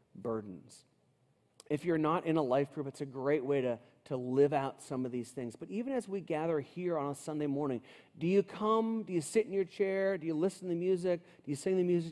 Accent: American